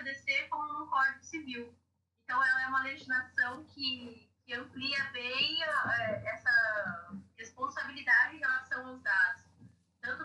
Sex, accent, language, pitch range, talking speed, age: female, Brazilian, Portuguese, 245-320 Hz, 110 wpm, 20-39